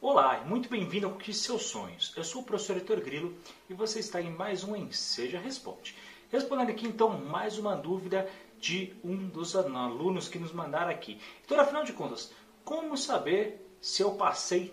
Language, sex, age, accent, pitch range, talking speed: Portuguese, male, 30-49, Brazilian, 190-245 Hz, 185 wpm